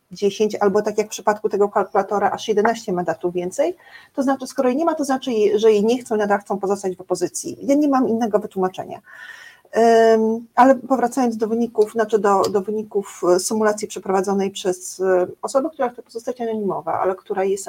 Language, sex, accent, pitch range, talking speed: Polish, female, native, 195-250 Hz, 180 wpm